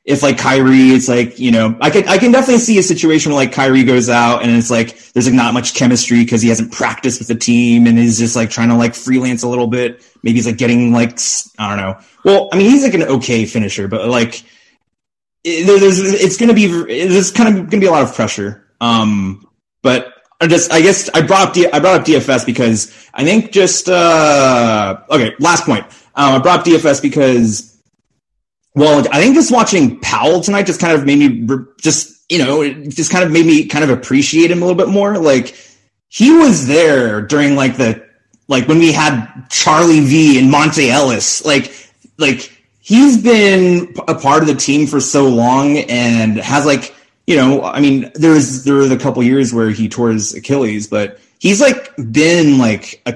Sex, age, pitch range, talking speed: male, 30-49, 115-160 Hz, 210 wpm